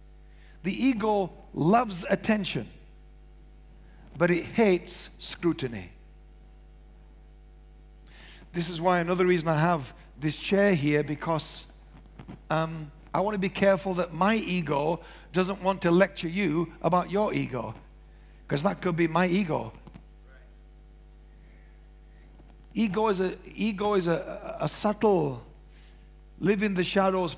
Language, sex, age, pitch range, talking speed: English, male, 60-79, 160-195 Hz, 105 wpm